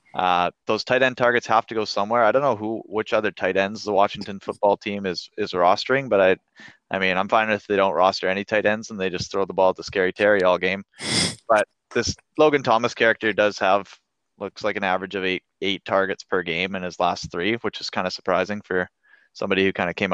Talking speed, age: 240 wpm, 20-39